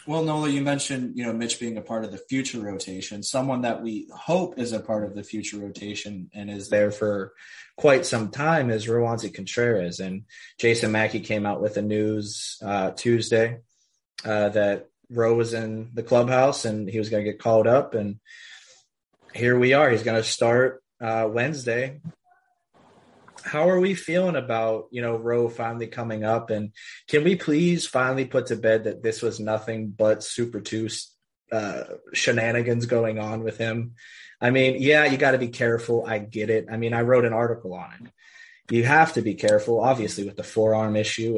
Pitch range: 105-120 Hz